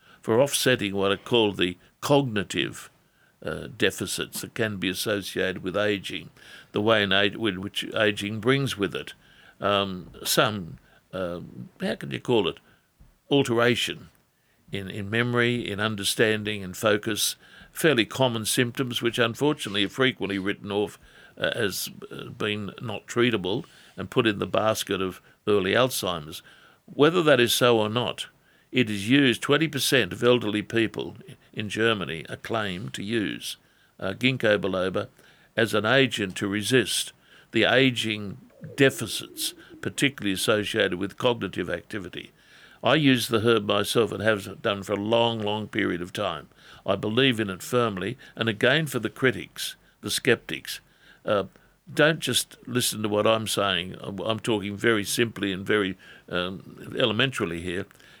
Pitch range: 100-120 Hz